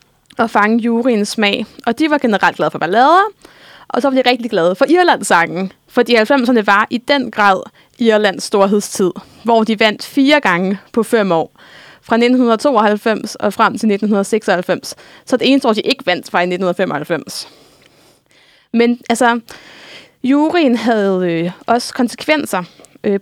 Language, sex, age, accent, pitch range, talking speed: Danish, female, 20-39, native, 200-250 Hz, 155 wpm